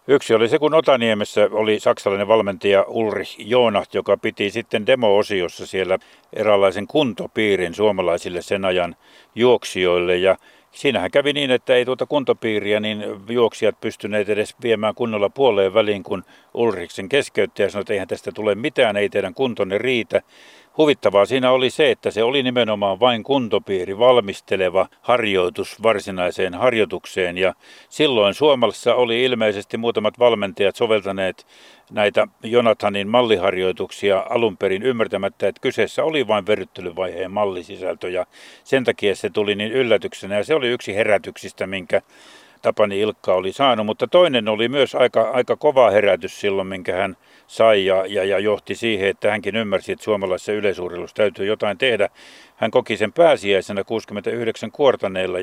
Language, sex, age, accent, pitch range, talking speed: Finnish, male, 60-79, native, 100-120 Hz, 145 wpm